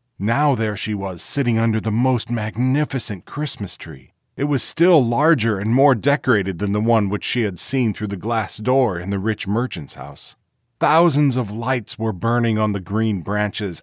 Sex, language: male, English